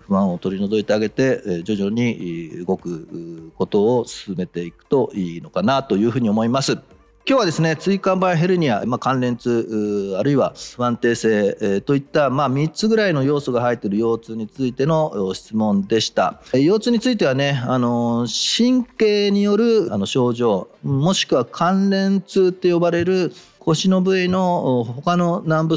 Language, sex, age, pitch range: Japanese, male, 40-59, 105-175 Hz